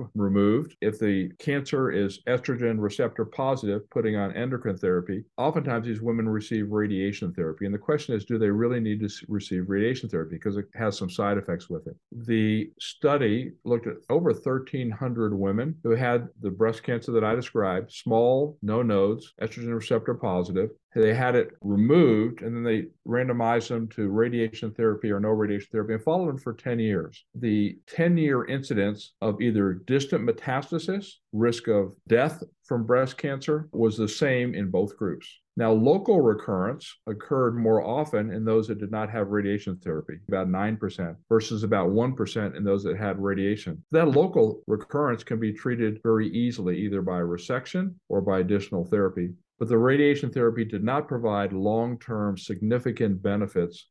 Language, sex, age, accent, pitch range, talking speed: English, male, 50-69, American, 100-125 Hz, 165 wpm